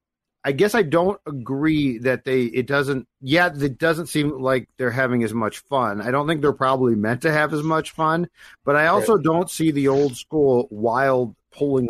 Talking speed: 200 wpm